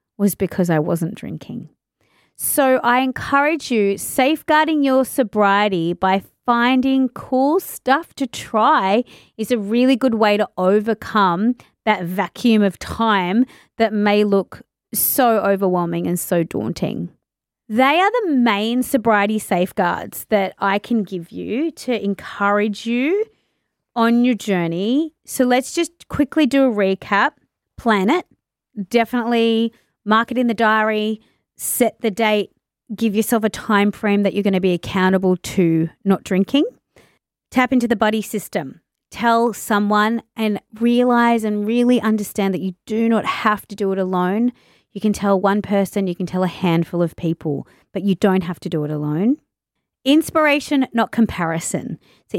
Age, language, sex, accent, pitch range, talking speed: 30-49, English, female, Australian, 195-245 Hz, 150 wpm